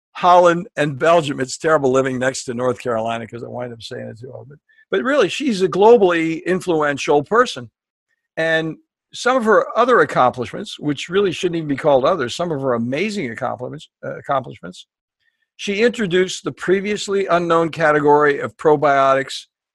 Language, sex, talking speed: English, male, 165 wpm